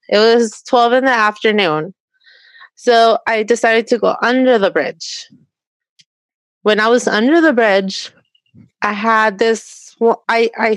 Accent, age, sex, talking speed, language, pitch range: American, 20-39, female, 135 wpm, English, 200-245 Hz